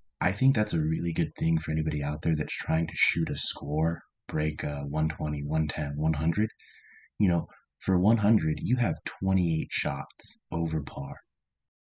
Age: 20-39